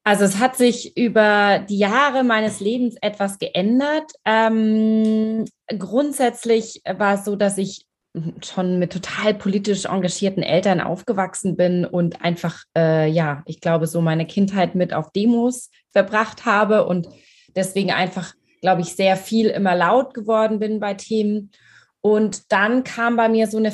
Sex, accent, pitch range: female, German, 180-220 Hz